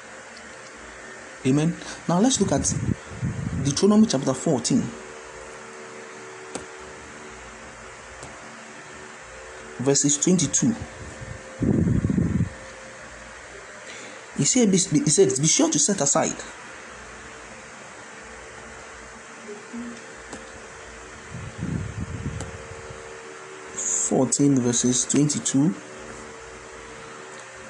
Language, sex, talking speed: English, male, 45 wpm